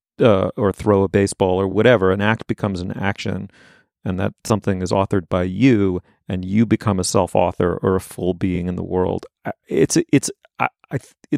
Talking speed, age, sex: 180 wpm, 40-59, male